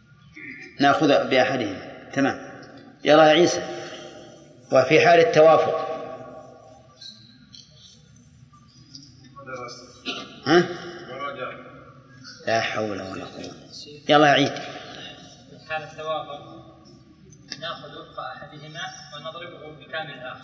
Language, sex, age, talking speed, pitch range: Arabic, male, 30-49, 75 wpm, 130-160 Hz